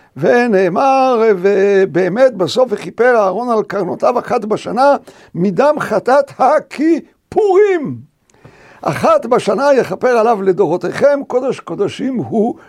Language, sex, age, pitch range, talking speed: Hebrew, male, 60-79, 190-275 Hz, 100 wpm